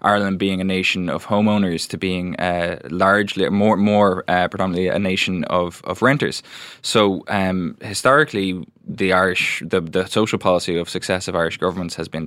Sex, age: male, 20-39